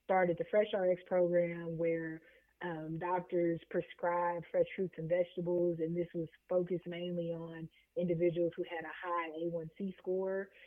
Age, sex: 20-39, female